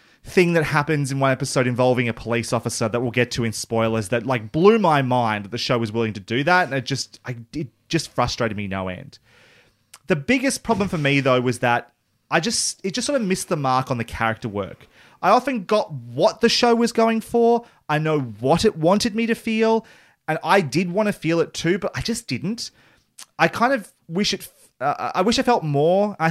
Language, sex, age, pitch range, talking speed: English, male, 30-49, 125-200 Hz, 230 wpm